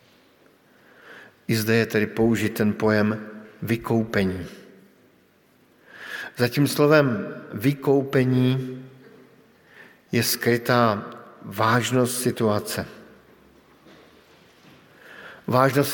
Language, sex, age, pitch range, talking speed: Slovak, male, 50-69, 115-135 Hz, 65 wpm